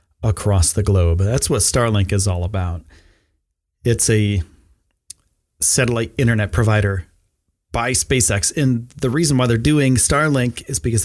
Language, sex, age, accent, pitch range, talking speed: English, male, 30-49, American, 90-125 Hz, 135 wpm